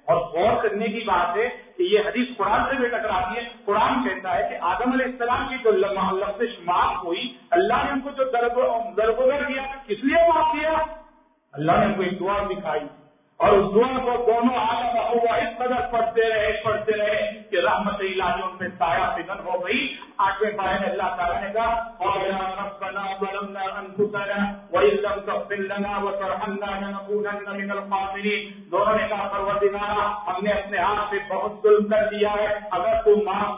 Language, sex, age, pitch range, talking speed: Urdu, male, 50-69, 195-250 Hz, 110 wpm